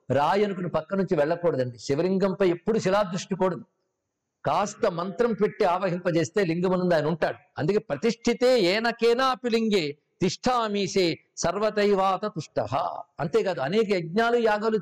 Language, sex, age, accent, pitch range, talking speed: Telugu, male, 50-69, native, 170-225 Hz, 105 wpm